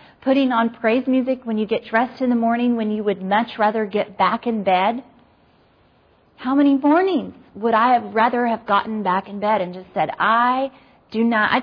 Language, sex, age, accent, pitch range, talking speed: English, female, 40-59, American, 215-280 Hz, 200 wpm